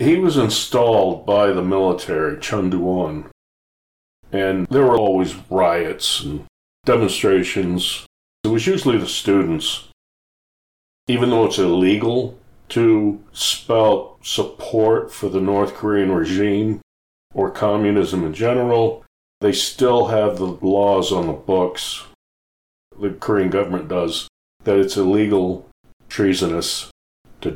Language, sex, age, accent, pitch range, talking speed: English, male, 40-59, American, 90-110 Hz, 115 wpm